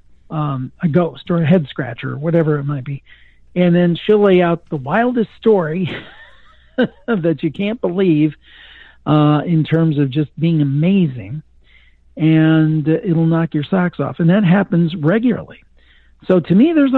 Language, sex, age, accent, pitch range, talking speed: English, male, 50-69, American, 150-185 Hz, 165 wpm